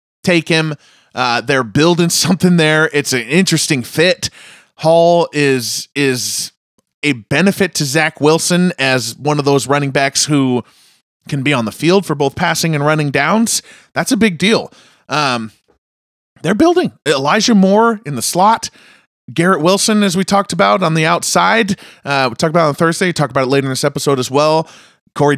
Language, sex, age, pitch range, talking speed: English, male, 30-49, 130-175 Hz, 185 wpm